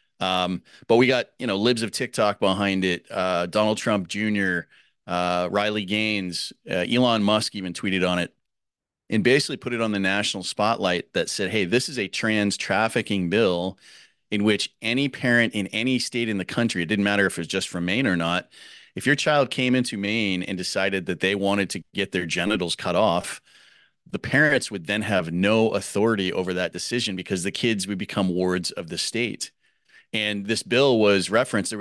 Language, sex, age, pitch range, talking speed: English, male, 30-49, 95-110 Hz, 200 wpm